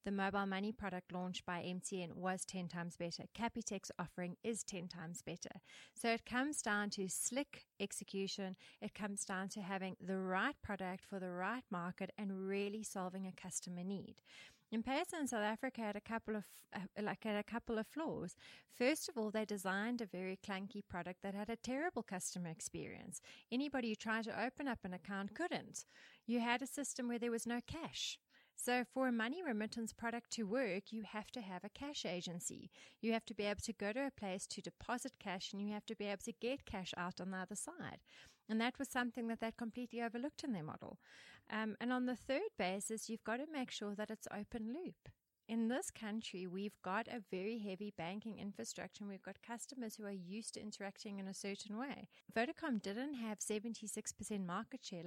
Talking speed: 205 wpm